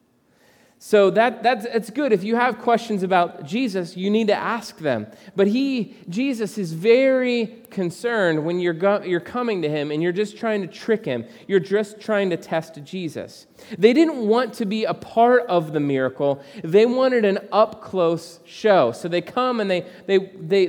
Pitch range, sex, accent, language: 170-230 Hz, male, American, English